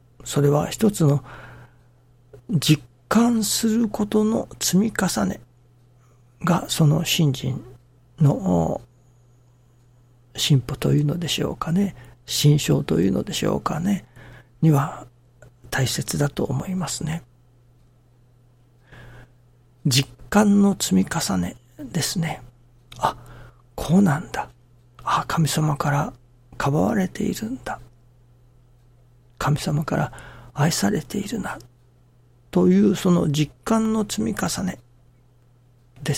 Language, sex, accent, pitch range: Japanese, male, native, 120-160 Hz